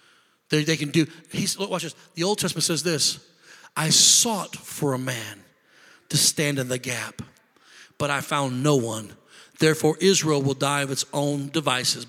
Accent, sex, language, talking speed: American, male, English, 175 wpm